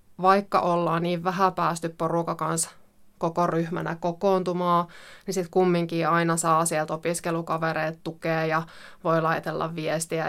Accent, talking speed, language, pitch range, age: native, 120 wpm, Finnish, 165-185 Hz, 20-39